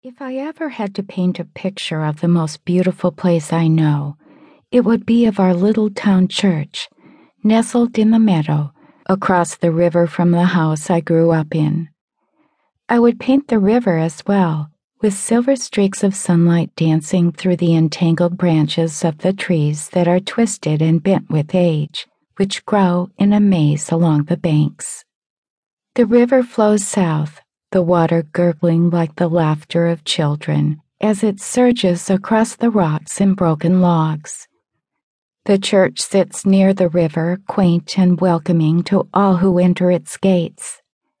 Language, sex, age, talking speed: English, female, 50-69, 155 wpm